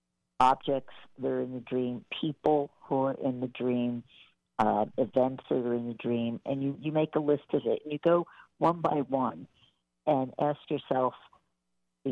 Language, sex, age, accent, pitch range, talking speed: English, female, 60-79, American, 115-150 Hz, 185 wpm